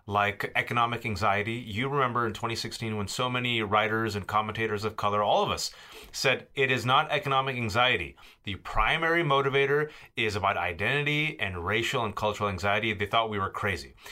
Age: 30-49